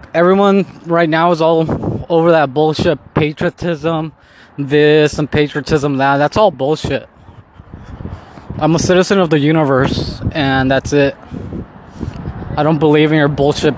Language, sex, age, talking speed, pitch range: English, male, 20-39, 135 wpm, 135-160 Hz